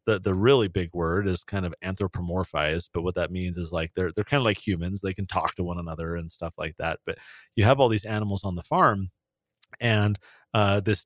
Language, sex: English, male